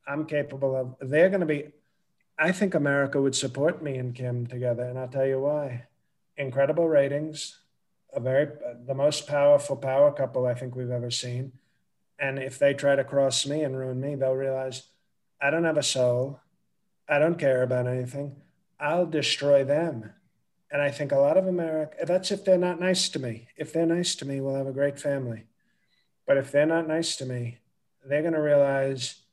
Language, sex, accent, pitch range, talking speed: English, male, American, 130-155 Hz, 190 wpm